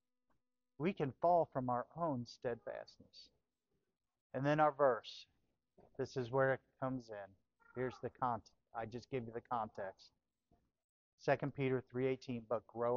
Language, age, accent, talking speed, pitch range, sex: English, 50-69, American, 145 wpm, 120-150 Hz, male